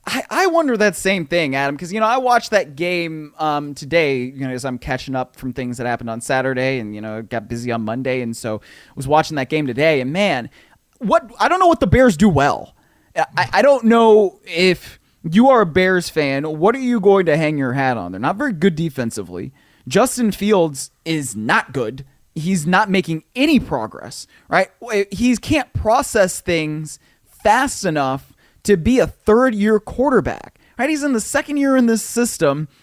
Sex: male